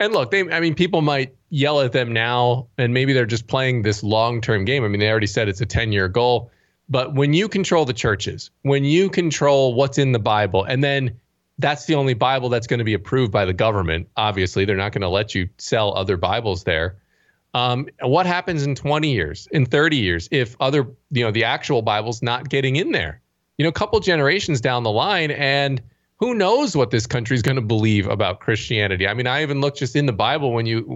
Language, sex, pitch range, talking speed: English, male, 110-140 Hz, 225 wpm